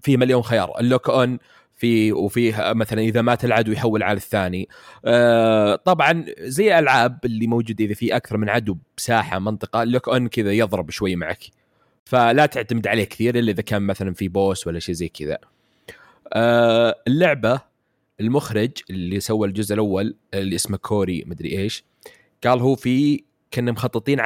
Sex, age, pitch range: male, 20-39, 100-125 Hz